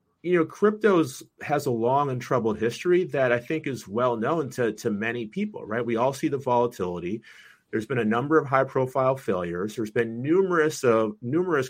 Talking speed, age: 195 wpm, 30-49